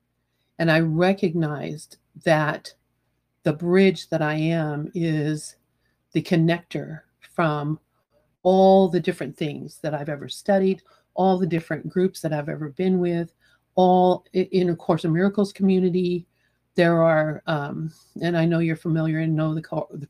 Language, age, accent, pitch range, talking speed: English, 50-69, American, 155-180 Hz, 145 wpm